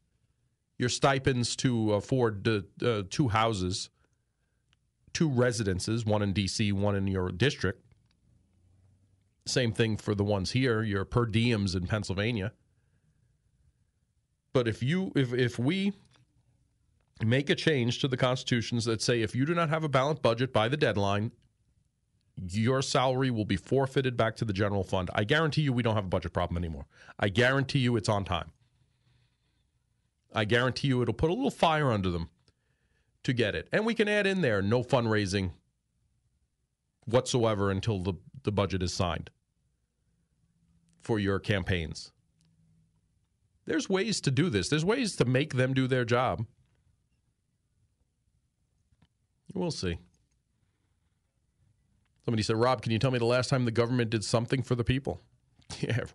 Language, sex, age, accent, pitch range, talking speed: English, male, 40-59, American, 100-130 Hz, 155 wpm